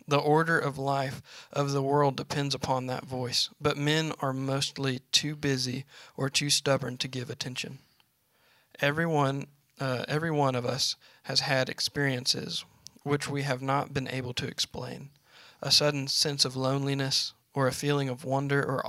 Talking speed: 160 wpm